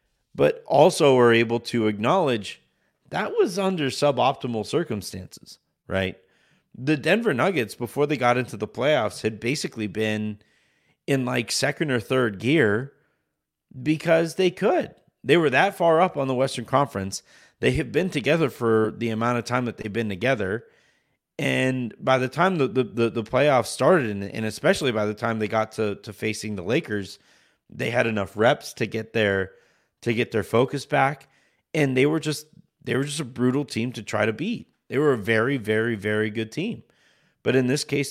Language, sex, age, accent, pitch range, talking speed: English, male, 30-49, American, 110-140 Hz, 180 wpm